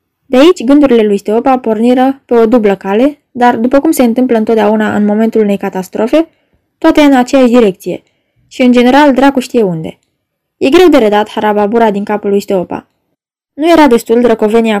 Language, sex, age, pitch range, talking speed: Romanian, female, 10-29, 210-265 Hz, 175 wpm